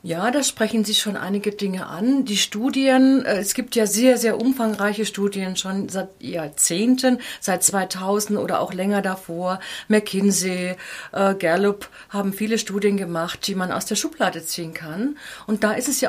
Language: German